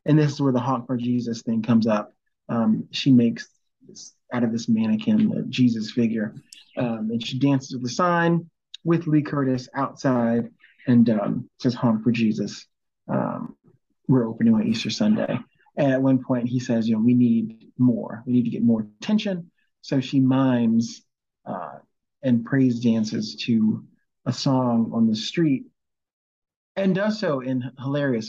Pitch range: 120-170 Hz